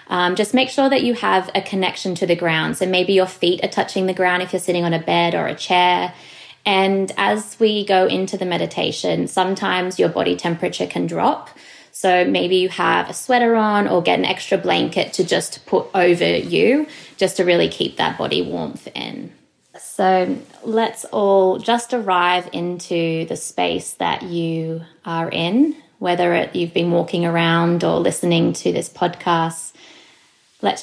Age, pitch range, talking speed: 20-39, 170-200 Hz, 175 wpm